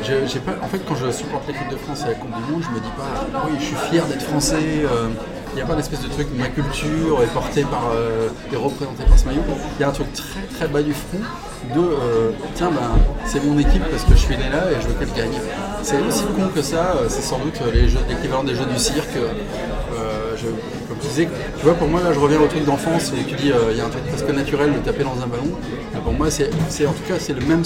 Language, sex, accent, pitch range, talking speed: French, male, French, 125-155 Hz, 280 wpm